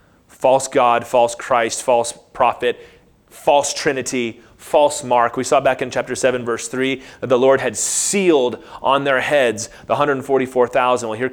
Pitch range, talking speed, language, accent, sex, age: 110-140 Hz, 160 wpm, English, American, male, 30-49